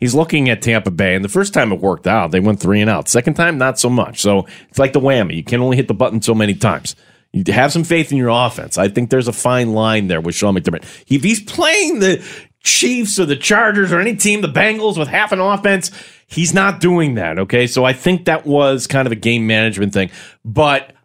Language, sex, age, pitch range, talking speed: English, male, 30-49, 105-155 Hz, 250 wpm